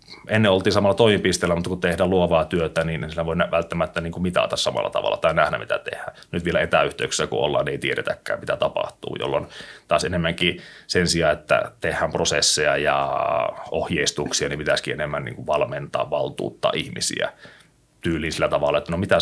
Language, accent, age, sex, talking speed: Finnish, native, 30-49, male, 160 wpm